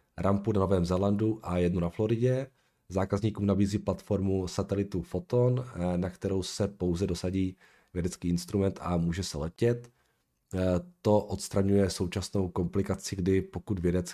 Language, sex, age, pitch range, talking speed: Czech, male, 40-59, 85-100 Hz, 130 wpm